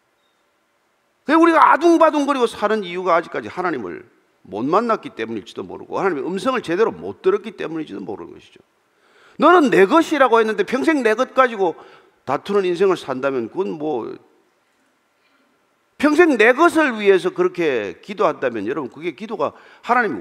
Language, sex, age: Korean, male, 40-59